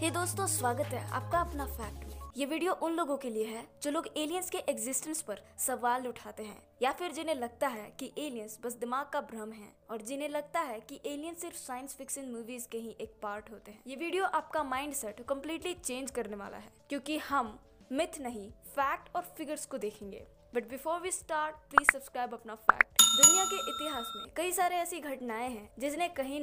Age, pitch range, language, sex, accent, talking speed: 20-39, 225-300 Hz, Hindi, female, native, 200 wpm